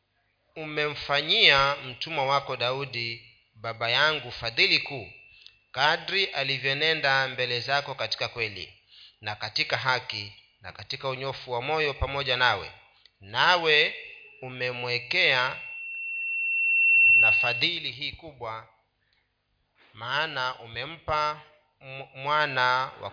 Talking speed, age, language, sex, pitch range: 90 wpm, 40-59, Swahili, male, 120-150 Hz